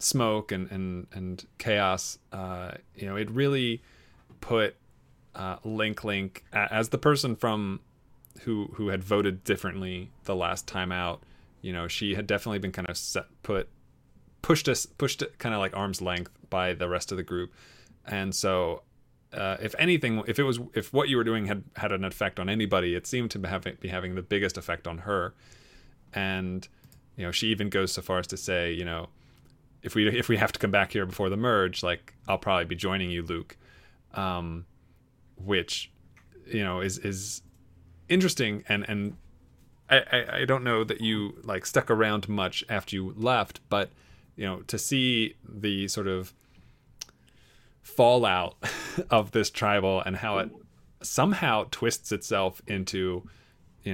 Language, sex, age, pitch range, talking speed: English, male, 30-49, 90-110 Hz, 175 wpm